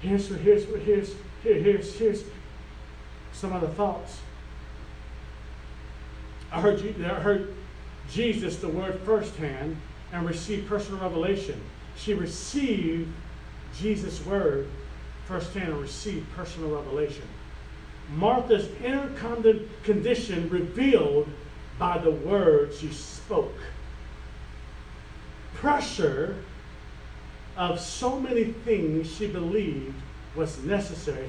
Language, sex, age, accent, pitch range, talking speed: English, male, 40-59, American, 140-215 Hz, 95 wpm